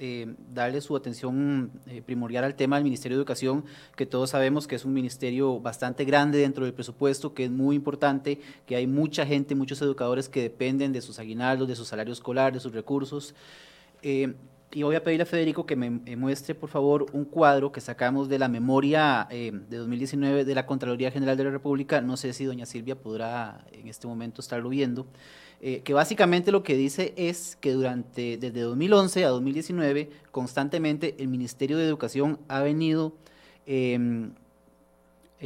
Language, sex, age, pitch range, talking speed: Spanish, male, 30-49, 125-145 Hz, 180 wpm